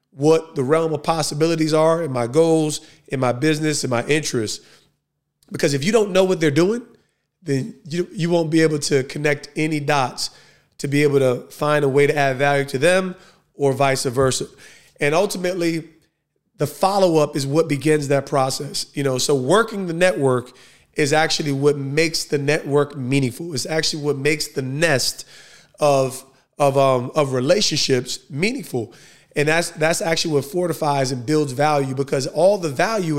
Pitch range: 140-175 Hz